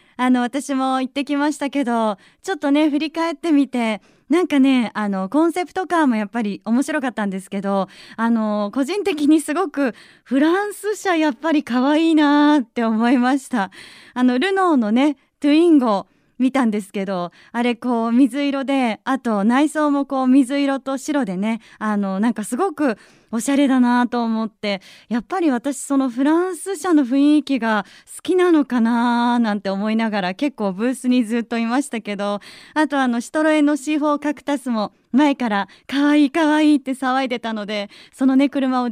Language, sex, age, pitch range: Japanese, female, 30-49, 230-305 Hz